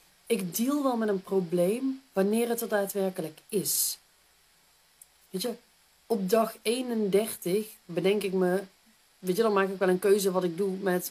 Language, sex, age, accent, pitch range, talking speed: Dutch, female, 40-59, Dutch, 180-220 Hz, 165 wpm